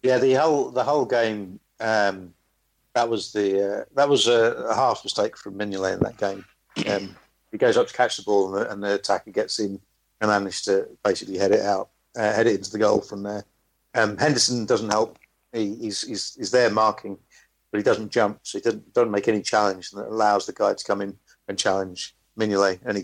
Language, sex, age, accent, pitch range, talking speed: English, male, 50-69, British, 100-115 Hz, 225 wpm